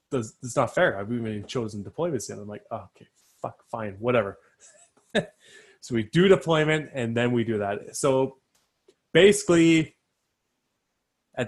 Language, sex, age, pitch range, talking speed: English, male, 20-39, 110-135 Hz, 140 wpm